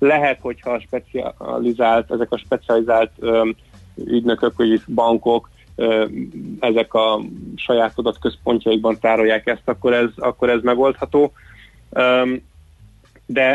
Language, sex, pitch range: Hungarian, male, 115-135 Hz